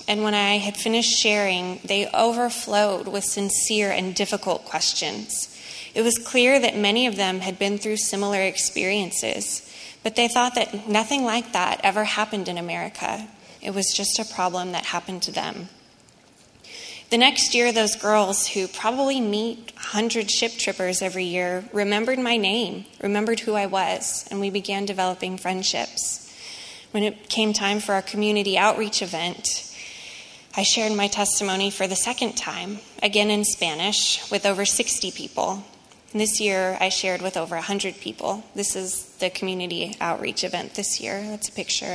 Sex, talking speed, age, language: female, 160 wpm, 20-39, English